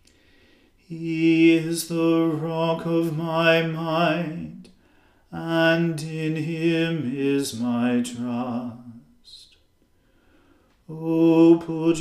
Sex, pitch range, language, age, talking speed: male, 155-165 Hz, English, 40-59, 75 wpm